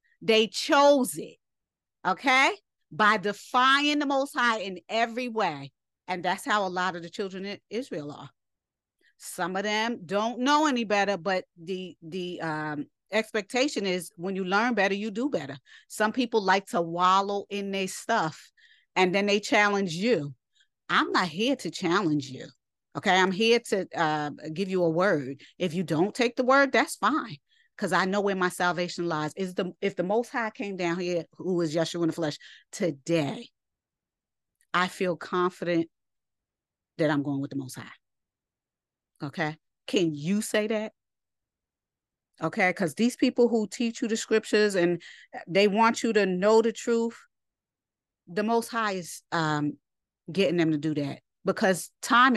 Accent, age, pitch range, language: American, 40-59, 170-225 Hz, English